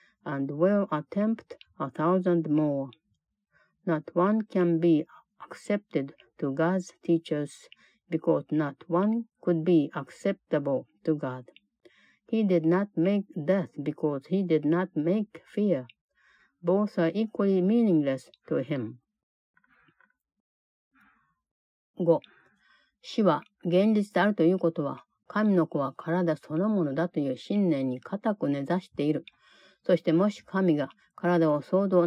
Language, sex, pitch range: Japanese, female, 150-190 Hz